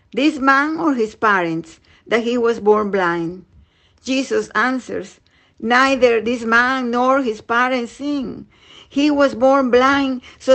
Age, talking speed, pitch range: 50-69, 135 wpm, 210-255 Hz